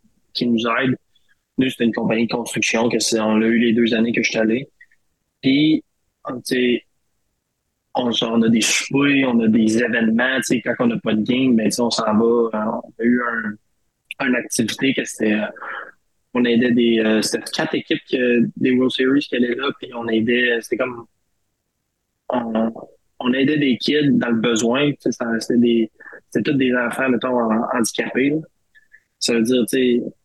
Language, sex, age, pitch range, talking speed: French, male, 20-39, 115-130 Hz, 180 wpm